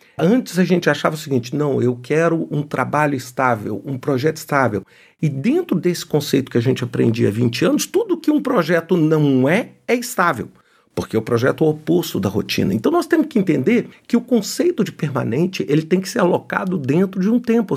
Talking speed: 205 wpm